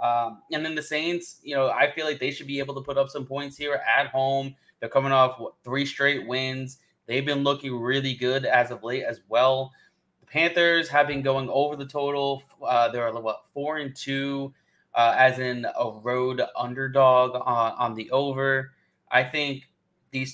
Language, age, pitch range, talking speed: English, 20-39, 120-140 Hz, 200 wpm